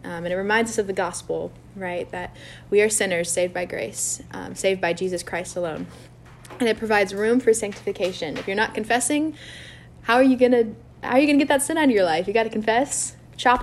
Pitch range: 190-245 Hz